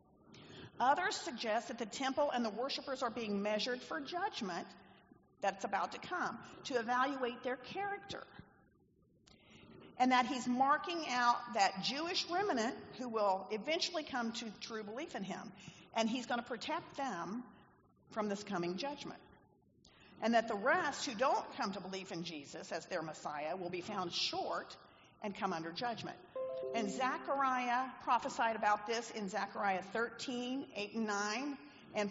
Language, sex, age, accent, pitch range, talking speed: English, female, 50-69, American, 205-270 Hz, 155 wpm